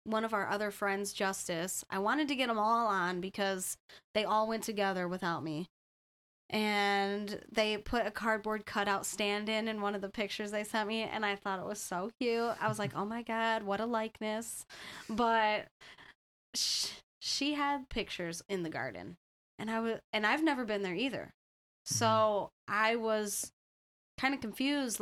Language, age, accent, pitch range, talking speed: English, 20-39, American, 185-220 Hz, 175 wpm